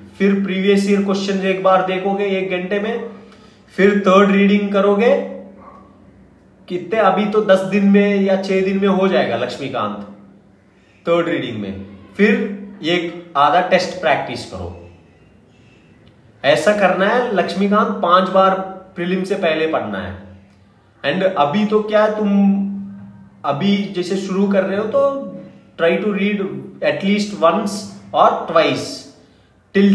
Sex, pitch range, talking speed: male, 155-200 Hz, 110 wpm